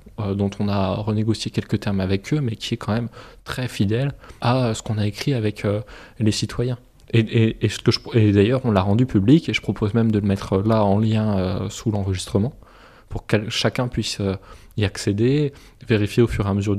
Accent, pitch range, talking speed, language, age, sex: French, 105-130 Hz, 210 wpm, French, 20-39, male